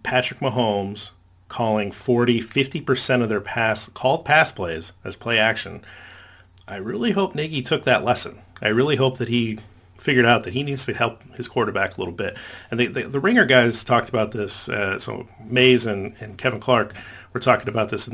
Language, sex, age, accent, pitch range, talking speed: English, male, 40-59, American, 100-125 Hz, 195 wpm